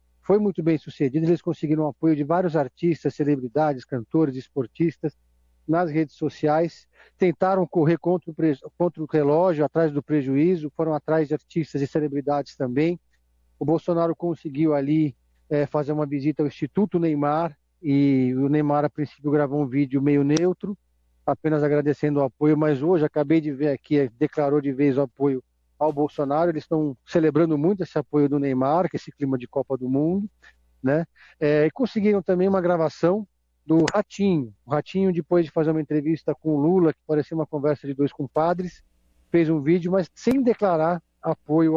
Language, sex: Portuguese, male